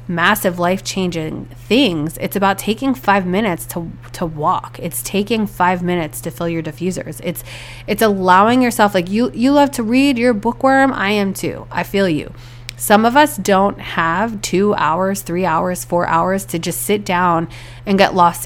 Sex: female